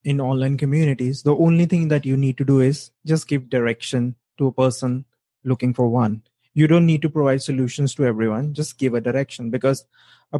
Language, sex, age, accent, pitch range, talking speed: English, male, 20-39, Indian, 130-150 Hz, 200 wpm